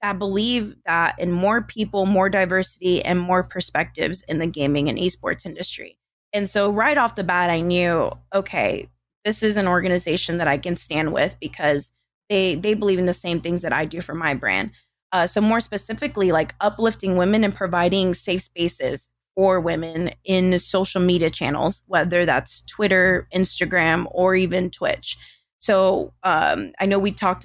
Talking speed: 175 wpm